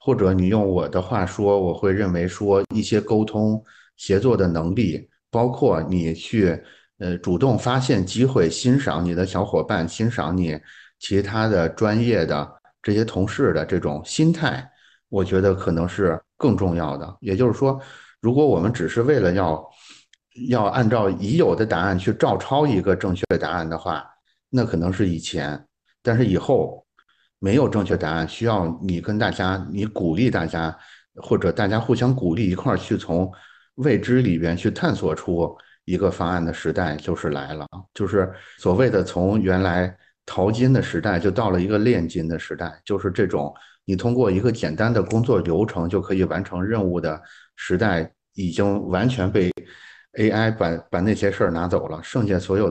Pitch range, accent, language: 85-110 Hz, native, Chinese